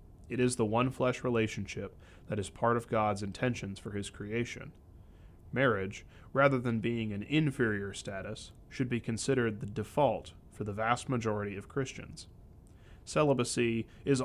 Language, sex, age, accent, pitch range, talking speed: English, male, 30-49, American, 95-125 Hz, 145 wpm